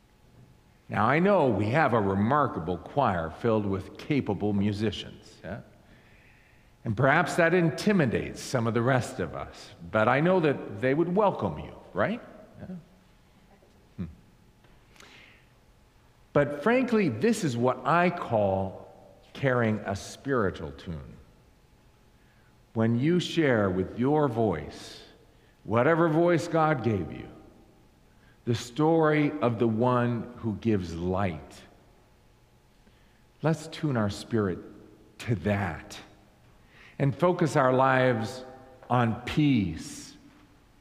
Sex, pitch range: male, 105-170 Hz